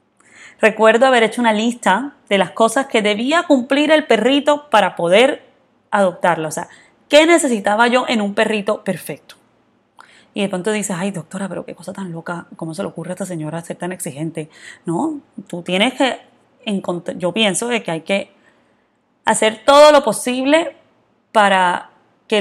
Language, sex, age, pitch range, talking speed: Spanish, female, 20-39, 180-230 Hz, 165 wpm